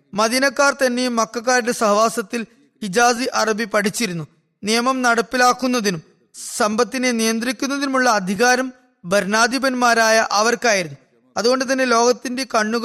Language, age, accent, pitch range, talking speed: Malayalam, 20-39, native, 205-250 Hz, 85 wpm